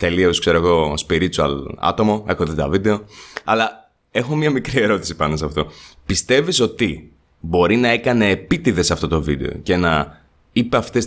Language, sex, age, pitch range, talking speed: Greek, male, 20-39, 90-125 Hz, 165 wpm